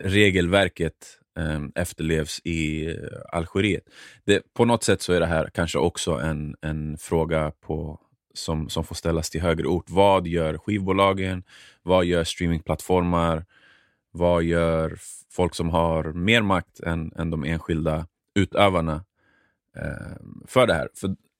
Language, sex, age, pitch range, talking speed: Swedish, male, 30-49, 80-95 Hz, 145 wpm